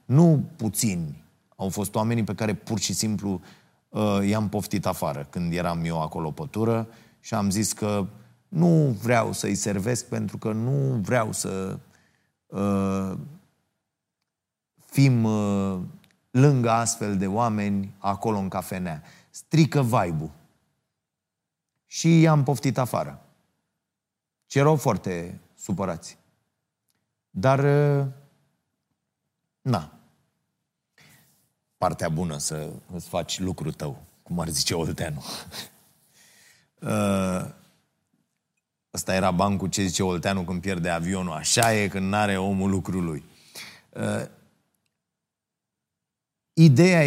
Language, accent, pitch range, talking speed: Romanian, native, 95-125 Hz, 110 wpm